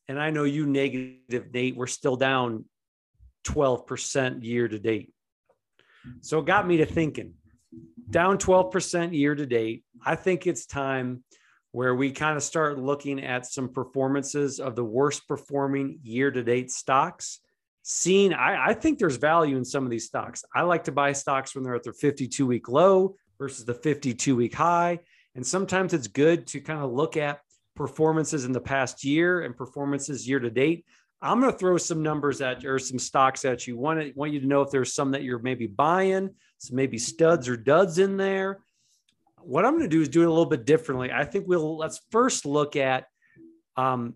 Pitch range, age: 130-165 Hz, 40-59